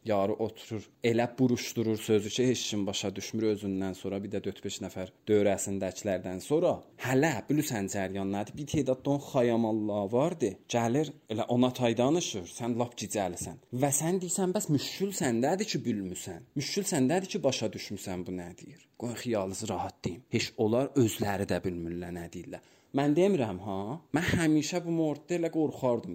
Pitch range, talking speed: 100-145 Hz, 155 wpm